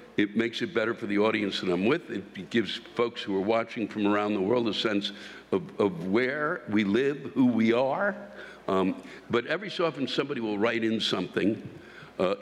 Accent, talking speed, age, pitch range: American, 200 wpm, 60-79, 100-125 Hz